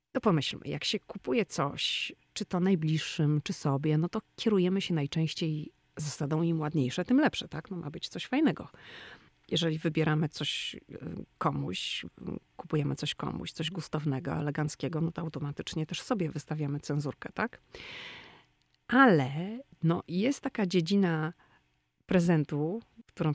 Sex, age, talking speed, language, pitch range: female, 40-59, 135 wpm, Polish, 150-190 Hz